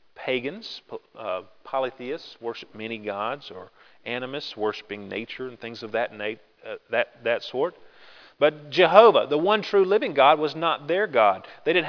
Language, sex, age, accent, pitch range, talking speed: English, male, 40-59, American, 115-155 Hz, 145 wpm